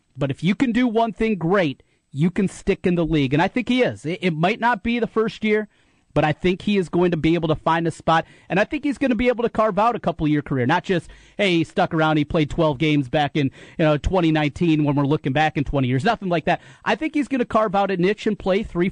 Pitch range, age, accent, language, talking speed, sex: 145-180 Hz, 30-49, American, English, 280 wpm, male